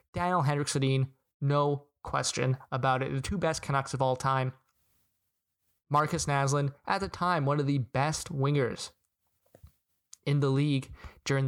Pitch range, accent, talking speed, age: 130-145 Hz, American, 145 wpm, 20-39